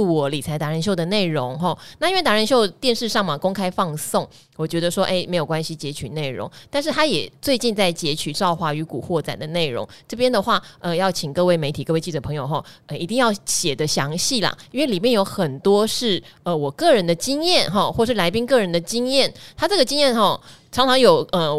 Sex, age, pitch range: female, 20-39, 155-210 Hz